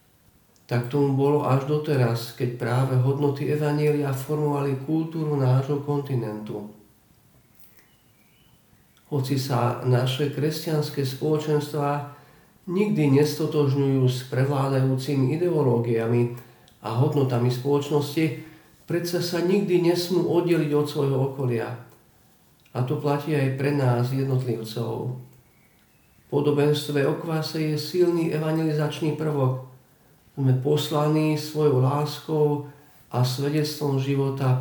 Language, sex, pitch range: Slovak, male, 125-150 Hz